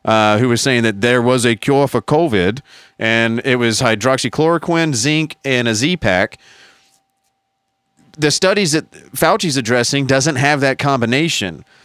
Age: 30-49